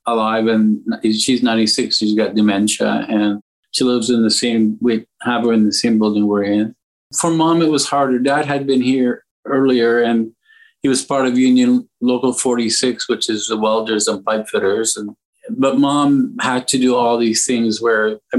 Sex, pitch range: male, 110-130 Hz